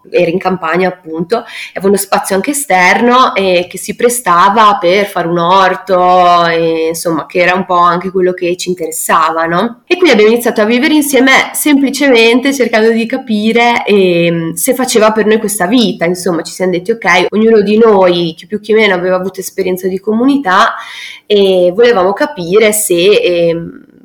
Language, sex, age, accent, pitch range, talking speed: Italian, female, 20-39, native, 180-230 Hz, 170 wpm